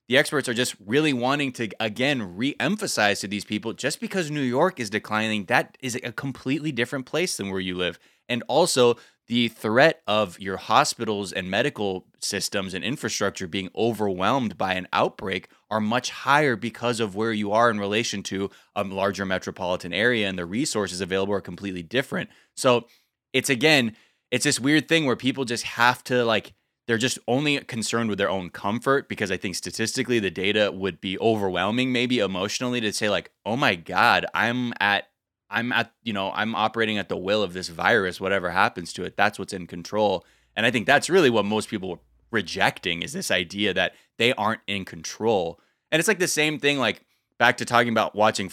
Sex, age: male, 20-39